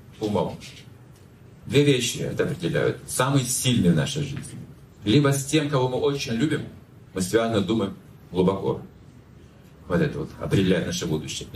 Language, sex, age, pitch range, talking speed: Russian, male, 40-59, 115-150 Hz, 140 wpm